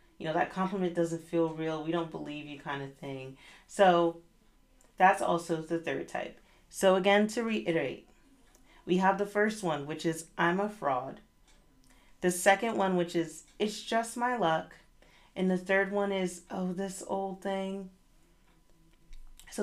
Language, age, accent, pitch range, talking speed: English, 40-59, American, 165-205 Hz, 160 wpm